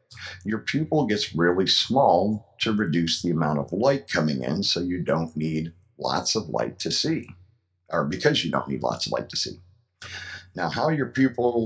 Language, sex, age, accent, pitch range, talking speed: English, male, 50-69, American, 80-105 Hz, 185 wpm